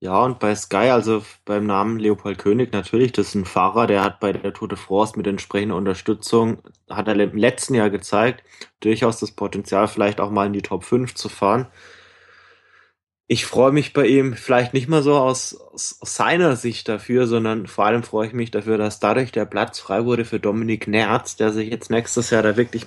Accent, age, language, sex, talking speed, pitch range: German, 20-39, German, male, 205 wpm, 105-120 Hz